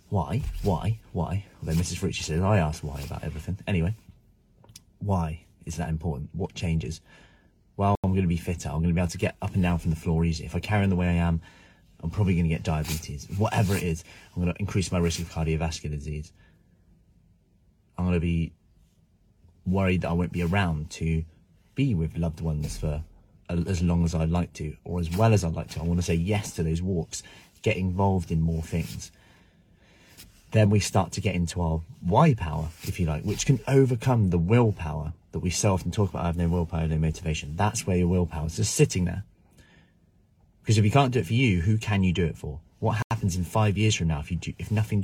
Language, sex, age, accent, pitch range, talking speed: English, male, 30-49, British, 85-105 Hz, 215 wpm